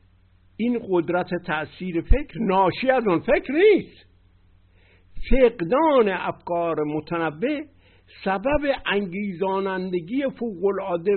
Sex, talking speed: male, 85 wpm